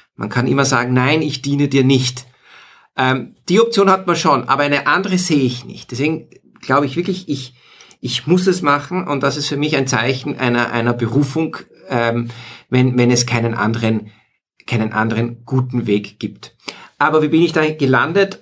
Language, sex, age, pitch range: German, male, 50-69, 115-145 Hz